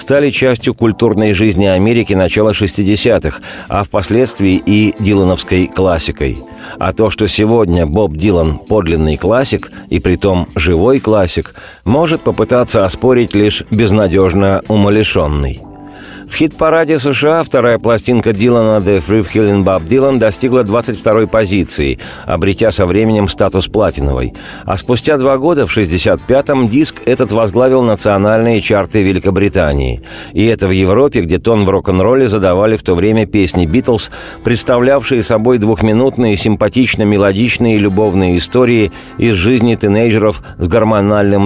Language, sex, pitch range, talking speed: Russian, male, 95-115 Hz, 125 wpm